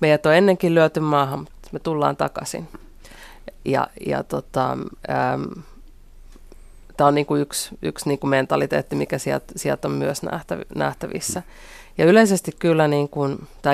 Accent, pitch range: native, 135-150 Hz